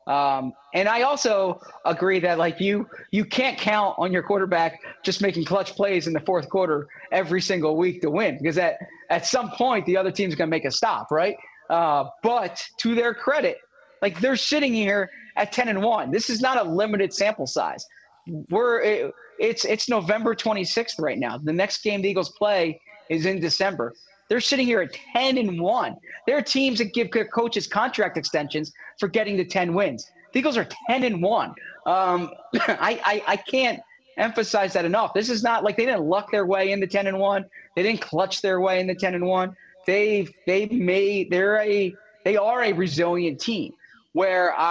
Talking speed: 200 wpm